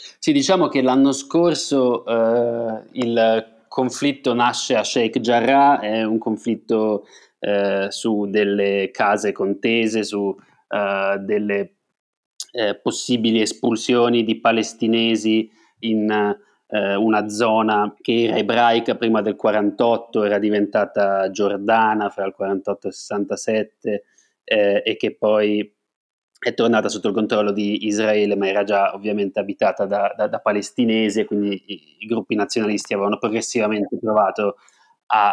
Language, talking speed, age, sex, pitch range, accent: Italian, 130 wpm, 30-49, male, 105-120 Hz, native